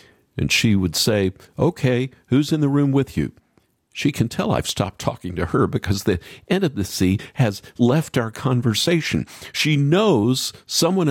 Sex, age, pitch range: male, 50-69, 95-140 Hz